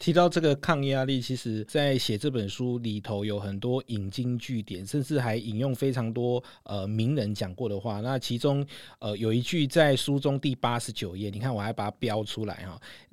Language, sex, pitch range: Chinese, male, 105-140 Hz